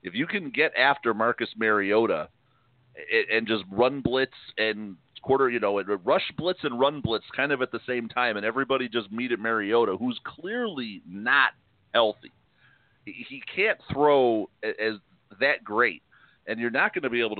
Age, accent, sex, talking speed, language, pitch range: 40-59, American, male, 170 wpm, English, 110-145 Hz